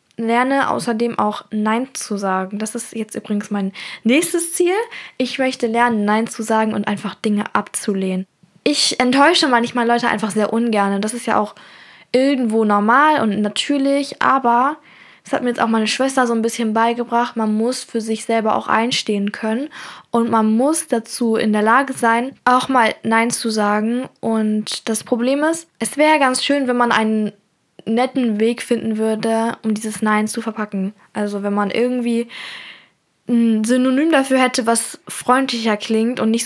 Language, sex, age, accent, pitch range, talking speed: German, female, 10-29, German, 220-270 Hz, 175 wpm